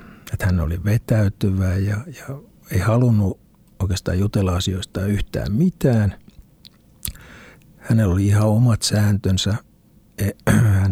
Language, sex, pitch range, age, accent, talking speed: Finnish, male, 95-120 Hz, 60-79, native, 110 wpm